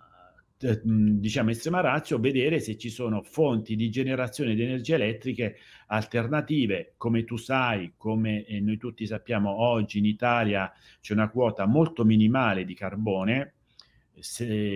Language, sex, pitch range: Italian, male, 100-120 Hz